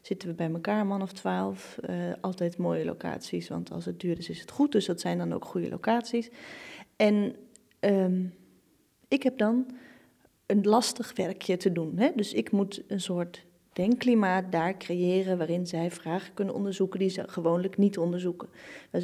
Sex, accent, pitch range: female, Dutch, 185-245 Hz